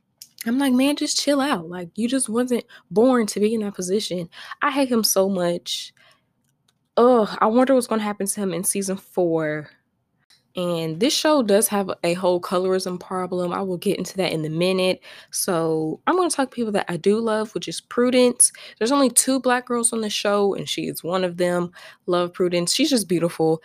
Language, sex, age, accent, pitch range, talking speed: English, female, 10-29, American, 170-230 Hz, 205 wpm